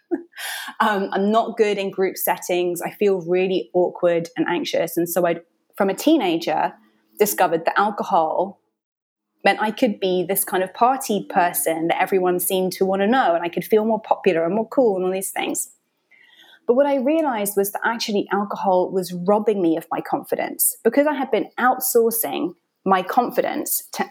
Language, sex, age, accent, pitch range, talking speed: English, female, 20-39, British, 185-235 Hz, 180 wpm